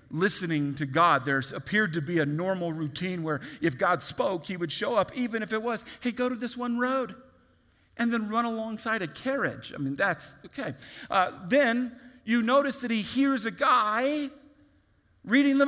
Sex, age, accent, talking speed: male, 40-59, American, 190 wpm